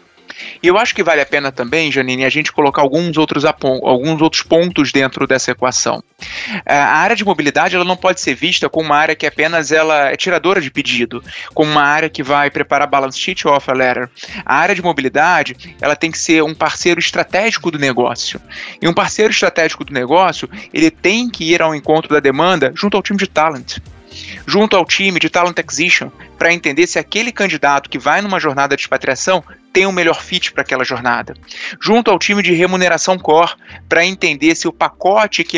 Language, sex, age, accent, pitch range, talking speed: English, male, 20-39, Brazilian, 145-185 Hz, 200 wpm